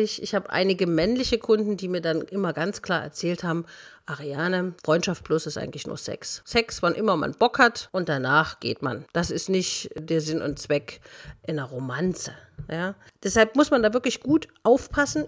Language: German